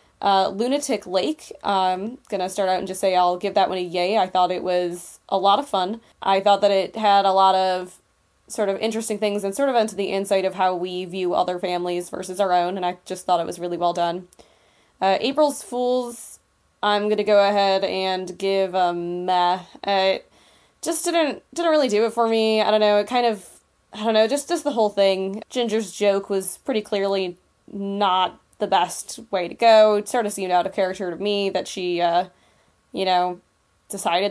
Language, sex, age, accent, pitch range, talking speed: English, female, 20-39, American, 185-220 Hz, 215 wpm